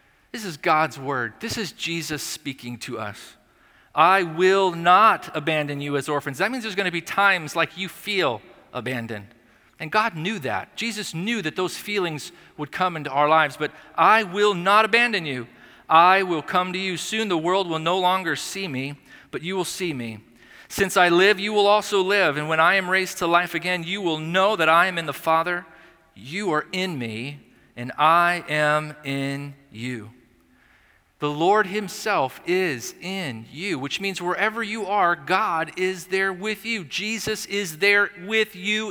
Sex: male